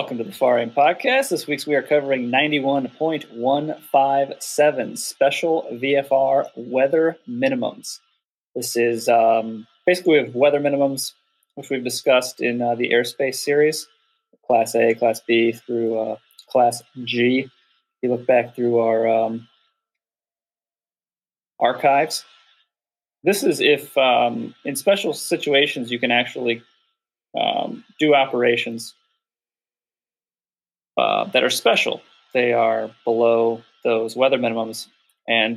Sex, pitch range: male, 115-140 Hz